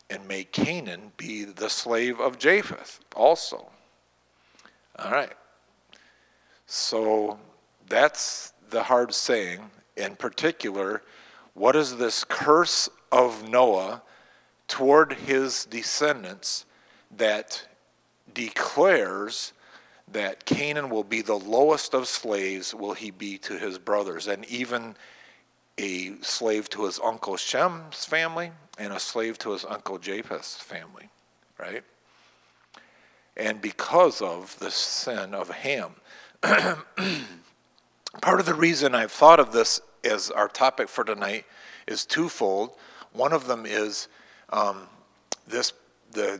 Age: 50-69